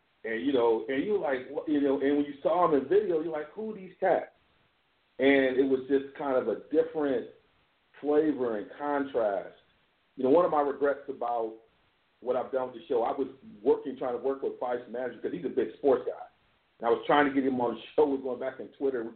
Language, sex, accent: English, male, American